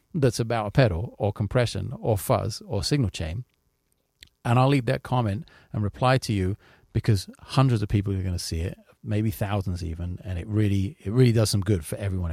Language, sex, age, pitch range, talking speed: English, male, 40-59, 100-130 Hz, 215 wpm